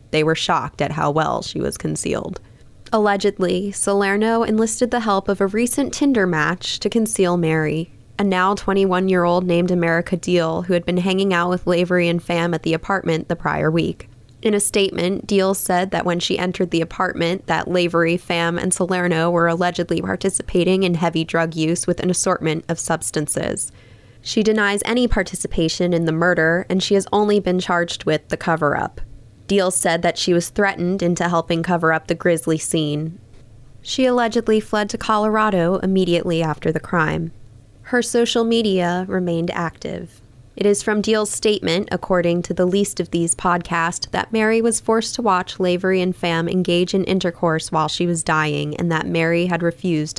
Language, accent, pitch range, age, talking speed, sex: English, American, 165-195 Hz, 20-39, 175 wpm, female